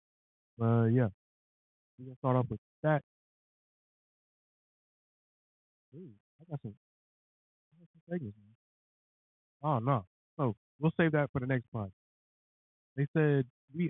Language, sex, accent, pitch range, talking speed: English, male, American, 110-150 Hz, 135 wpm